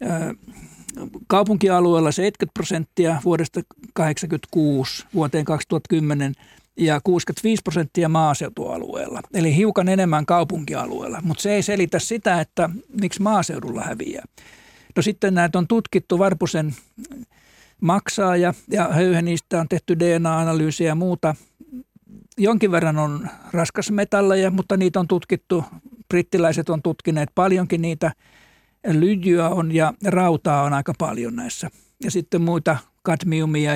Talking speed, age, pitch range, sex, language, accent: 115 wpm, 60-79, 160-190 Hz, male, Finnish, native